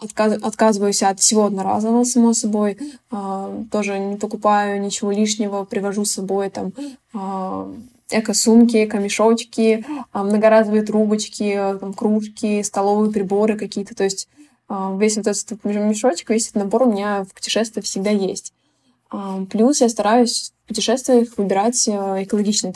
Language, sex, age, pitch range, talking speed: Russian, female, 20-39, 200-230 Hz, 120 wpm